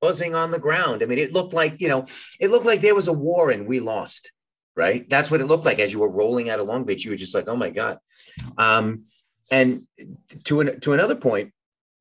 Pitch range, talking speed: 120-180 Hz, 245 wpm